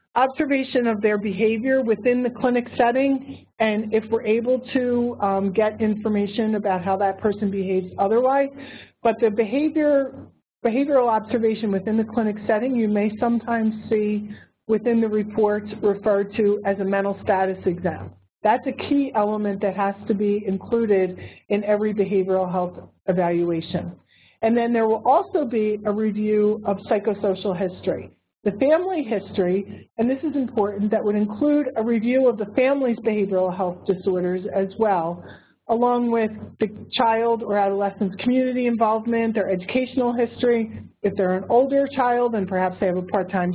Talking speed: 155 wpm